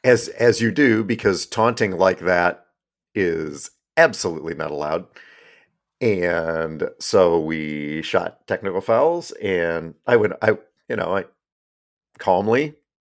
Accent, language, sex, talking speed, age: American, English, male, 120 wpm, 50-69